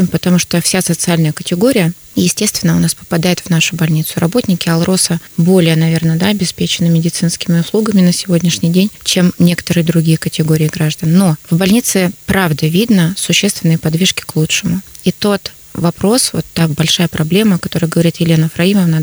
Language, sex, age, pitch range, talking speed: Russian, female, 20-39, 165-195 Hz, 155 wpm